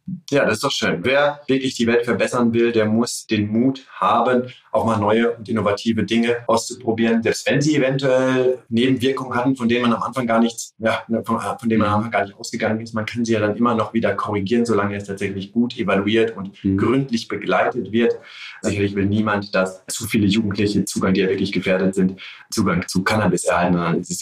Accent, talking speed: German, 210 wpm